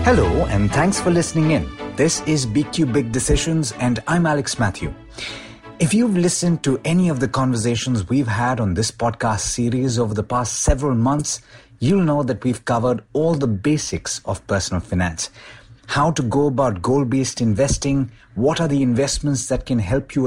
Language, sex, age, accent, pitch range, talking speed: English, male, 50-69, Indian, 110-140 Hz, 175 wpm